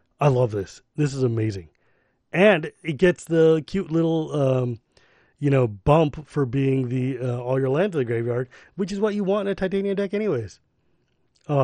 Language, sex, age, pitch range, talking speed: English, male, 30-49, 125-170 Hz, 190 wpm